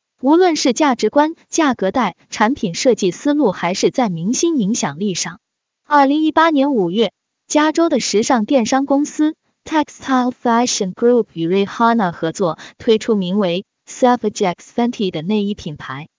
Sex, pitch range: female, 200-285 Hz